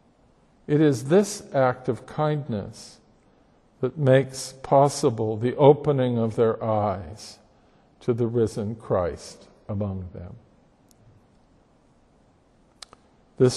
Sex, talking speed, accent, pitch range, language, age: male, 95 wpm, American, 115-145 Hz, English, 50-69